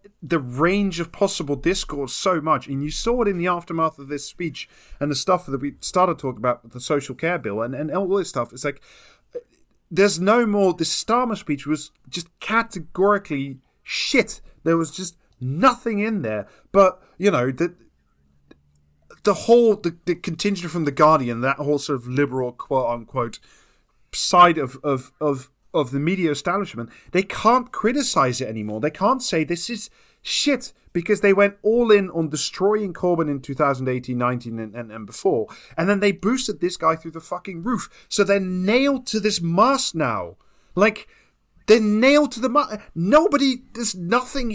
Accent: British